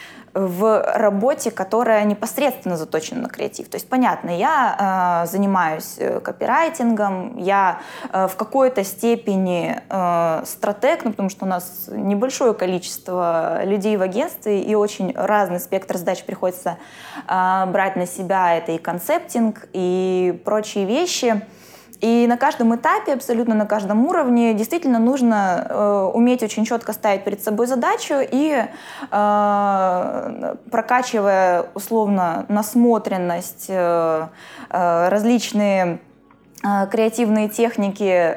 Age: 20-39